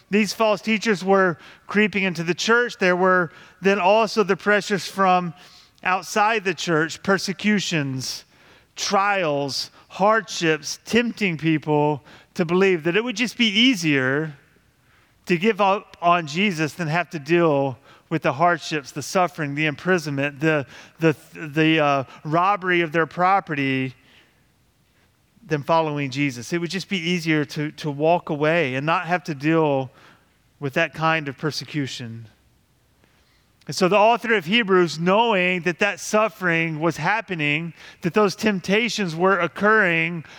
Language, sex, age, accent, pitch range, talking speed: English, male, 30-49, American, 155-215 Hz, 140 wpm